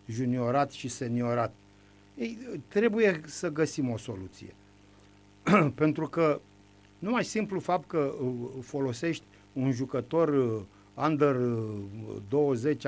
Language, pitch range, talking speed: Romanian, 110-180 Hz, 90 wpm